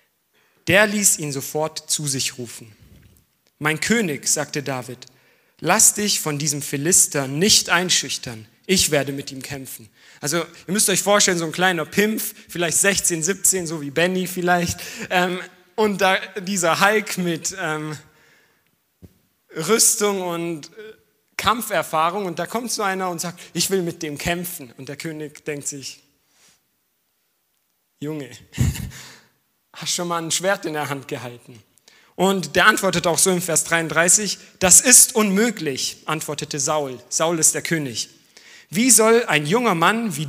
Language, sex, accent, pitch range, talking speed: German, male, German, 145-190 Hz, 145 wpm